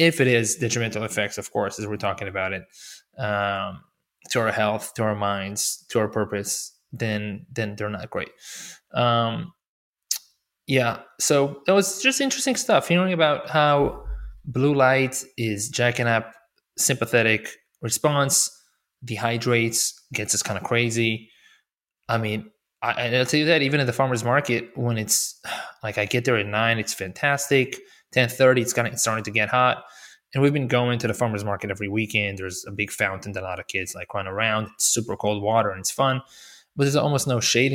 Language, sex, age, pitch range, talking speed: English, male, 20-39, 105-130 Hz, 190 wpm